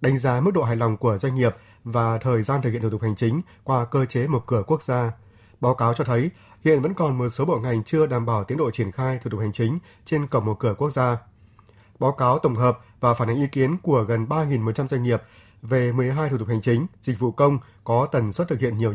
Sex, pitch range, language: male, 115-140 Hz, Vietnamese